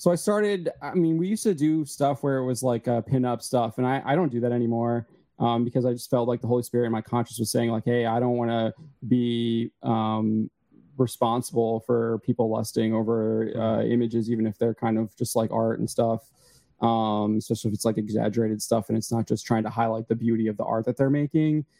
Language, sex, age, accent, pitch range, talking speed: English, male, 20-39, American, 115-125 Hz, 230 wpm